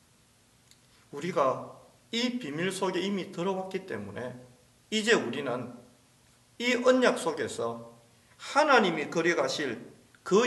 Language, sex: Korean, male